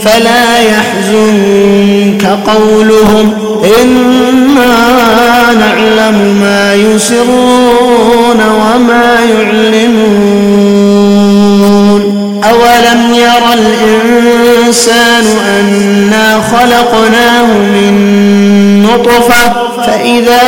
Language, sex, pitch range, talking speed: Arabic, male, 210-240 Hz, 50 wpm